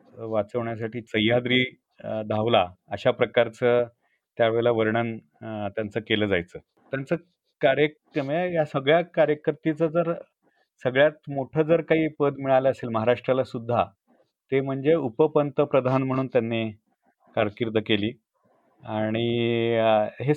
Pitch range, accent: 115-145 Hz, native